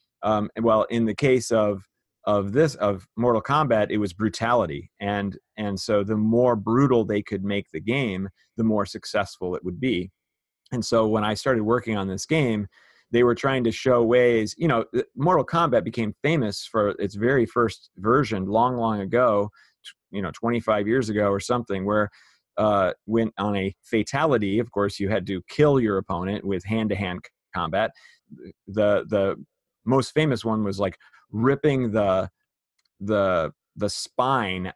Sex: male